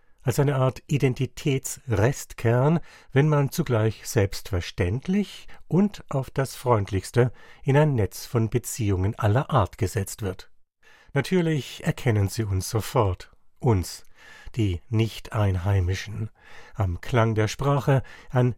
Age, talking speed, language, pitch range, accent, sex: 60-79, 110 wpm, German, 100-140 Hz, German, male